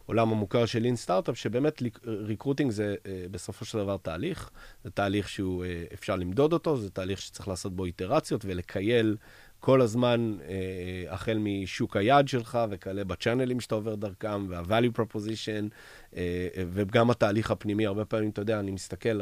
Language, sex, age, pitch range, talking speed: Hebrew, male, 30-49, 100-130 Hz, 145 wpm